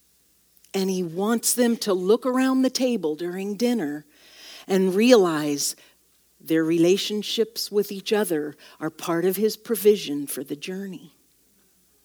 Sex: female